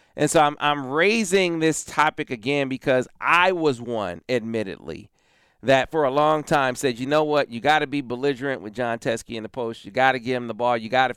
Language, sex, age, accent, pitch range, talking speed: English, male, 40-59, American, 130-160 Hz, 215 wpm